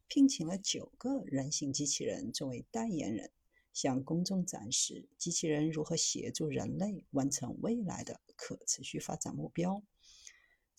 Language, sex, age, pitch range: Chinese, female, 50-69, 160-265 Hz